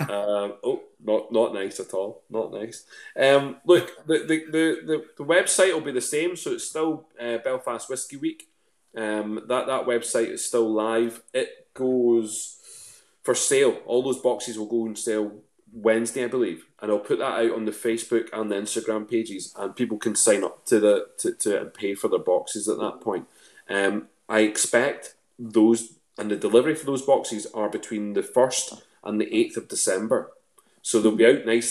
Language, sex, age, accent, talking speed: English, male, 20-39, British, 190 wpm